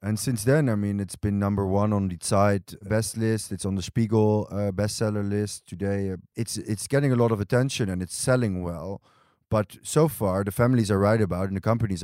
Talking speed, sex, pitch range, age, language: 225 wpm, male, 95-110 Hz, 30-49, Hebrew